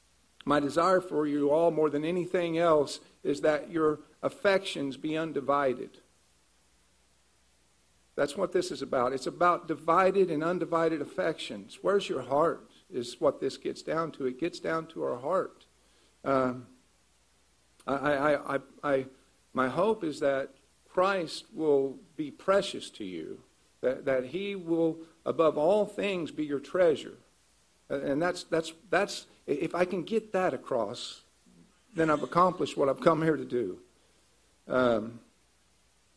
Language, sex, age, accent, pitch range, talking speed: English, male, 50-69, American, 135-180 Hz, 145 wpm